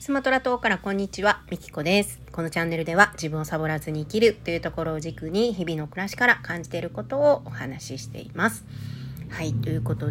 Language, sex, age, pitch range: Japanese, female, 40-59, 145-215 Hz